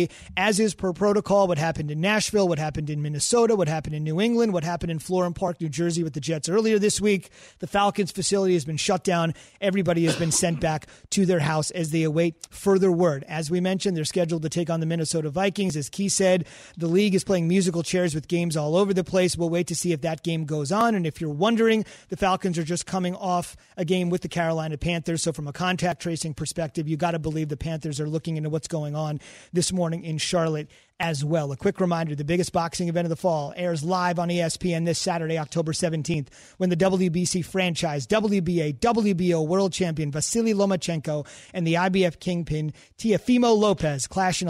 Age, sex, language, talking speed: 30-49, male, English, 215 wpm